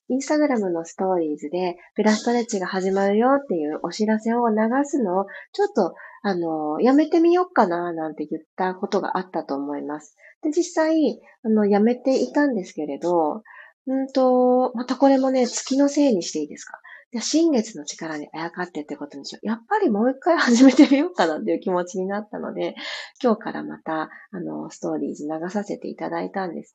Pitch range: 170-265 Hz